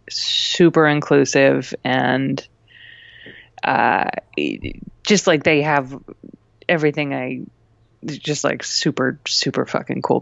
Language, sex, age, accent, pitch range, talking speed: English, female, 20-39, American, 135-160 Hz, 95 wpm